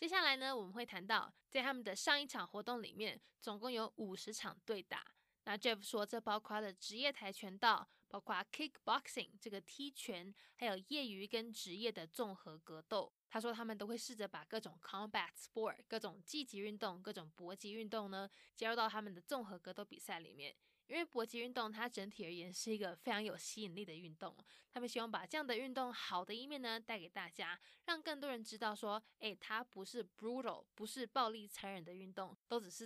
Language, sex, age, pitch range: Chinese, female, 10-29, 195-245 Hz